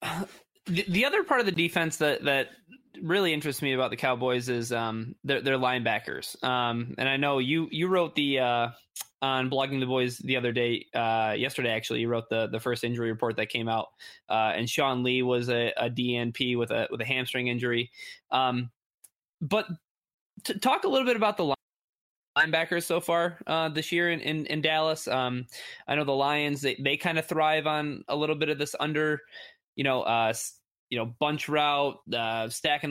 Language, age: English, 20-39